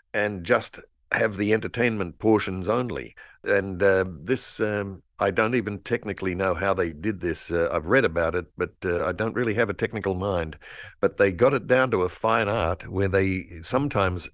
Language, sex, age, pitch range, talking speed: English, male, 60-79, 90-110 Hz, 195 wpm